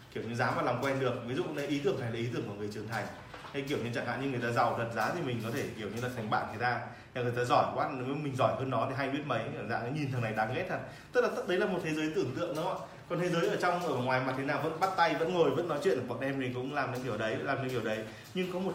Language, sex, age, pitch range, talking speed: Vietnamese, male, 20-39, 125-155 Hz, 335 wpm